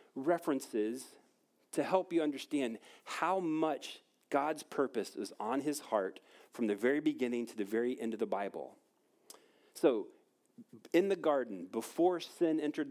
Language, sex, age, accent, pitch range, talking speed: English, male, 40-59, American, 130-200 Hz, 145 wpm